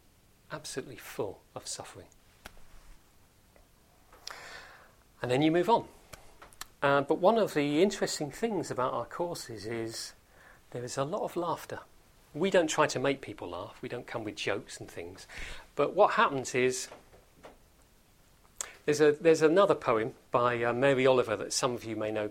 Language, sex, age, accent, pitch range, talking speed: English, male, 40-59, British, 105-140 Hz, 160 wpm